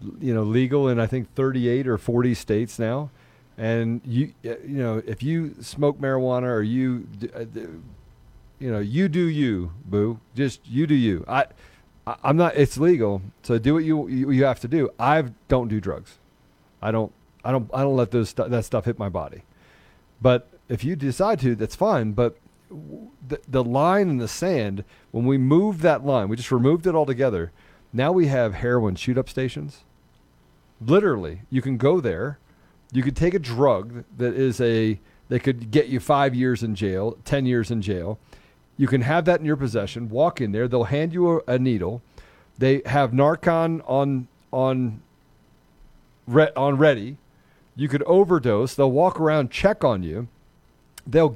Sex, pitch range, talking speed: male, 115-145 Hz, 180 wpm